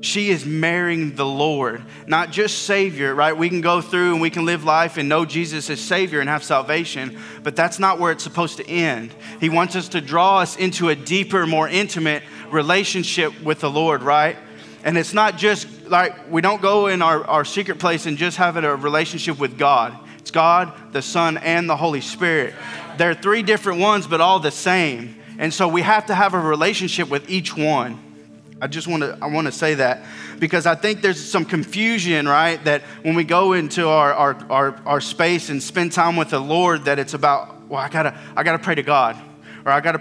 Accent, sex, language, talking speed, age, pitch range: American, male, English, 215 wpm, 20-39, 150-180 Hz